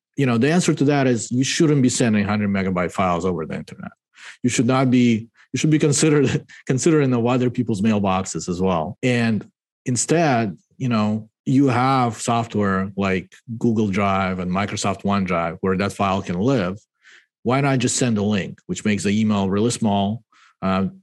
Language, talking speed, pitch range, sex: English, 180 wpm, 100-125 Hz, male